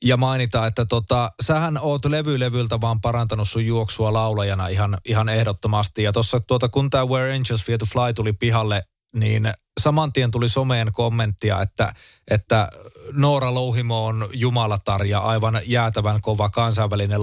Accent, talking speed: native, 145 wpm